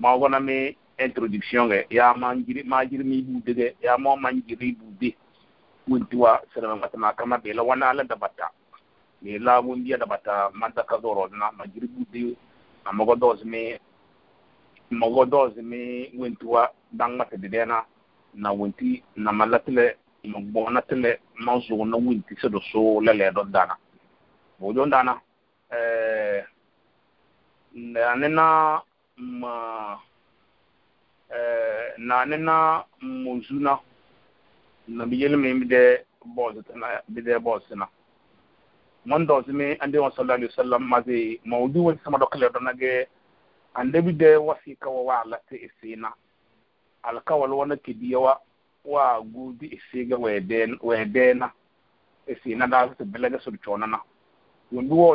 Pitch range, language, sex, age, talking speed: 115-135 Hz, English, male, 50-69, 115 wpm